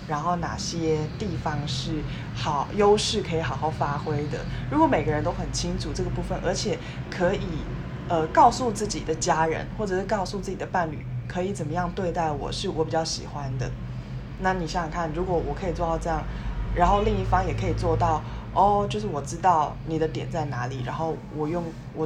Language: Chinese